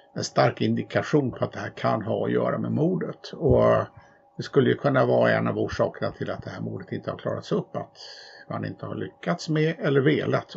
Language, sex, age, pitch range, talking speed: Swedish, male, 50-69, 115-155 Hz, 220 wpm